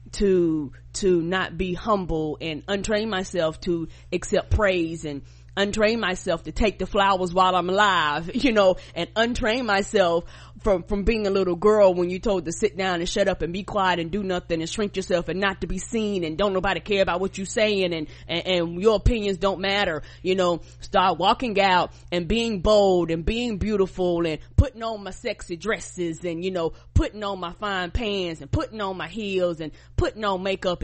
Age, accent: 20-39, American